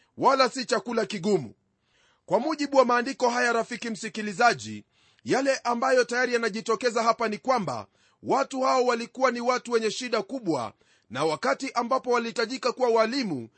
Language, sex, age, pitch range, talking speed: Swahili, male, 40-59, 230-265 Hz, 140 wpm